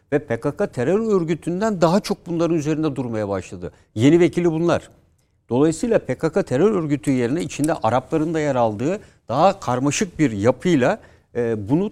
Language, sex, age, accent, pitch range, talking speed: Turkish, male, 60-79, native, 120-165 Hz, 140 wpm